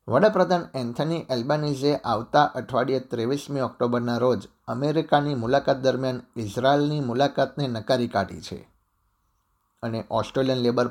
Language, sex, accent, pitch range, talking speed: Gujarati, male, native, 115-140 Hz, 110 wpm